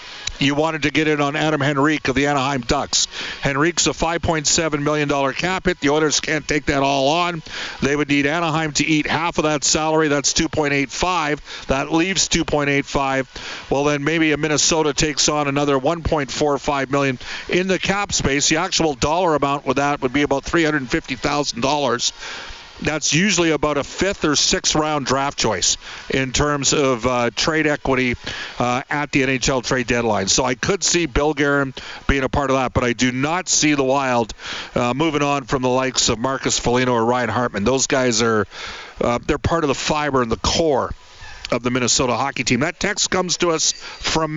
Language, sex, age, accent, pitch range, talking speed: English, male, 50-69, American, 140-175 Hz, 190 wpm